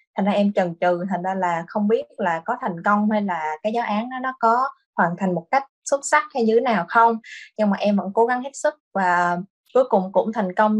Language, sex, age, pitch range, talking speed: Vietnamese, female, 20-39, 185-230 Hz, 255 wpm